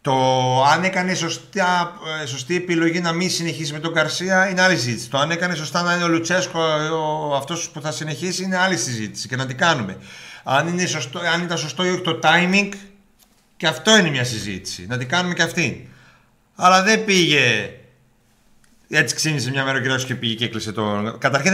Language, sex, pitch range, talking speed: Greek, male, 130-180 Hz, 200 wpm